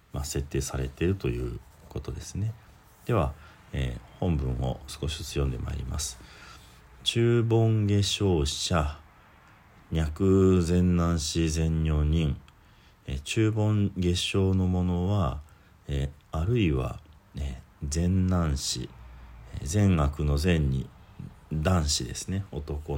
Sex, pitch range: male, 70-95 Hz